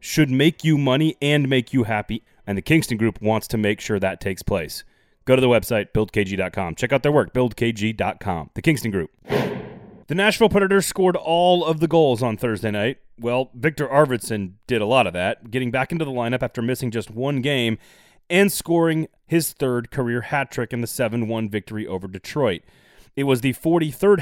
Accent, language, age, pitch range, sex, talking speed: American, English, 30-49, 115-160 Hz, male, 195 wpm